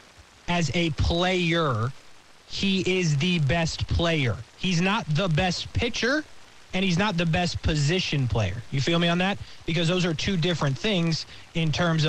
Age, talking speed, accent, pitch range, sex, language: 20-39, 165 wpm, American, 125-180 Hz, male, English